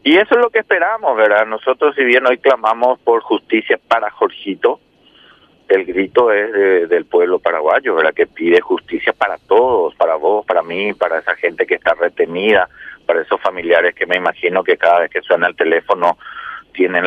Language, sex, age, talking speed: Spanish, male, 40-59, 185 wpm